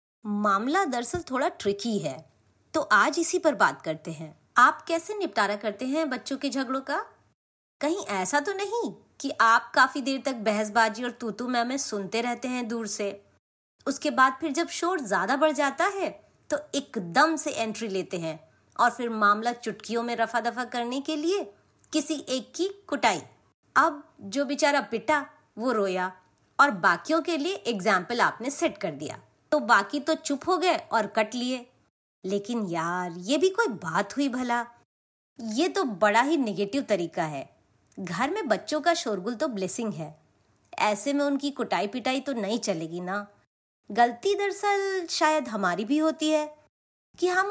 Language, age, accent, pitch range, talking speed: Hindi, 30-49, native, 215-310 Hz, 170 wpm